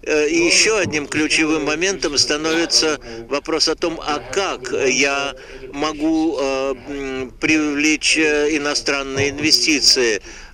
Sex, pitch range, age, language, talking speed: male, 135-160 Hz, 60-79, Russian, 90 wpm